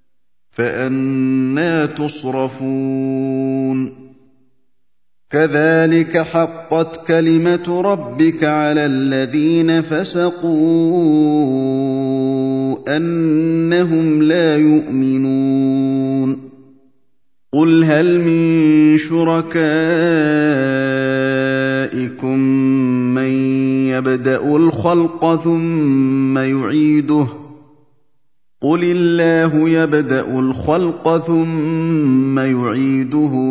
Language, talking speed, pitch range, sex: Indonesian, 50 wpm, 135-160 Hz, male